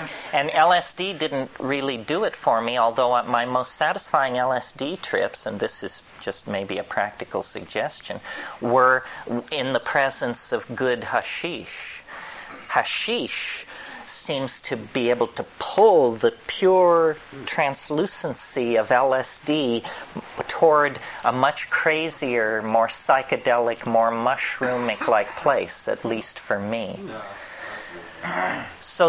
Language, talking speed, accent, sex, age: English, 115 wpm, American, male, 40-59